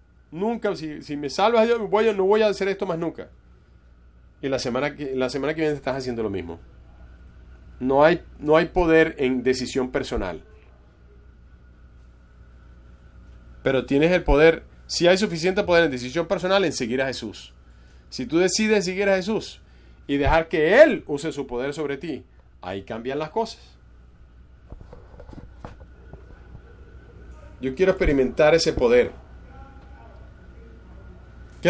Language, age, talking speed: English, 30-49, 140 wpm